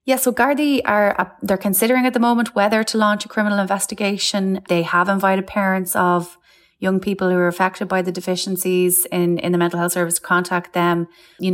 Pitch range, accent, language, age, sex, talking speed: 165-185 Hz, Irish, English, 20-39, female, 205 wpm